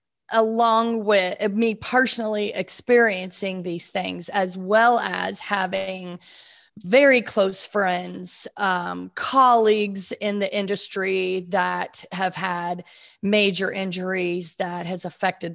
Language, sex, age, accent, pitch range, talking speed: English, female, 30-49, American, 180-215 Hz, 105 wpm